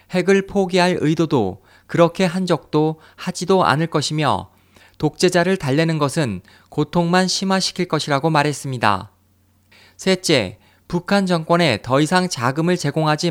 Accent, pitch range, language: native, 120-180 Hz, Korean